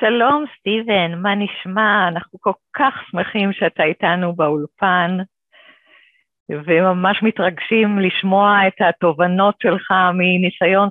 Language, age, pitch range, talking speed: Hebrew, 50-69, 170-220 Hz, 100 wpm